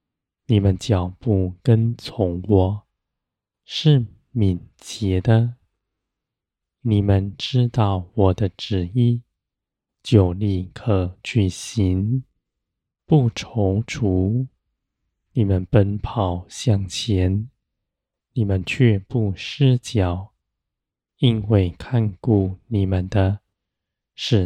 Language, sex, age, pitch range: Chinese, male, 20-39, 95-115 Hz